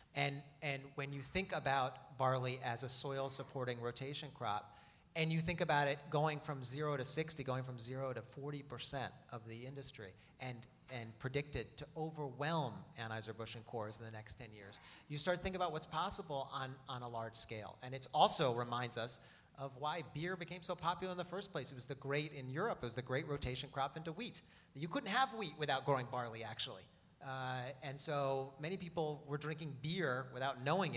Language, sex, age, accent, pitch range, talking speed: English, male, 30-49, American, 125-150 Hz, 200 wpm